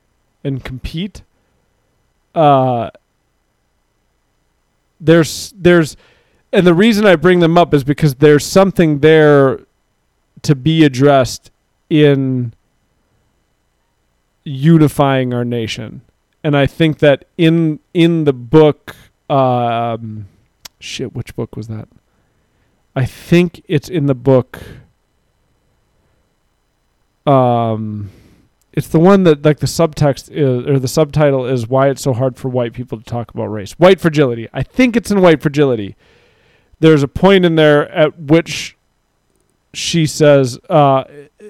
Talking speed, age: 125 wpm, 40-59